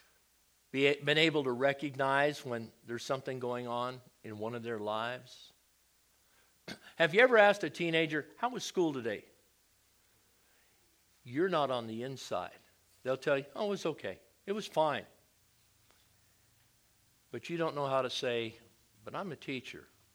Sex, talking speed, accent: male, 150 wpm, American